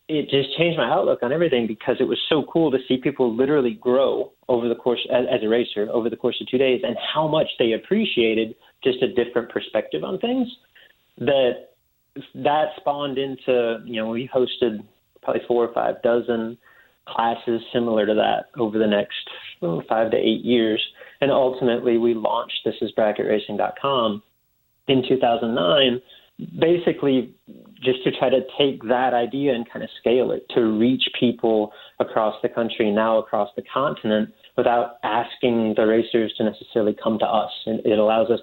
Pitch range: 110-130 Hz